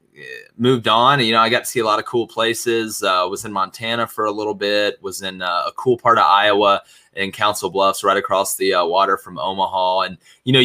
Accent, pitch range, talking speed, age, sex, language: American, 105-140 Hz, 240 wpm, 20-39, male, English